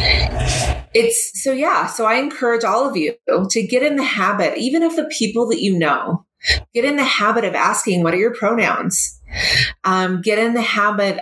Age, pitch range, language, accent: 30-49, 170-225 Hz, English, American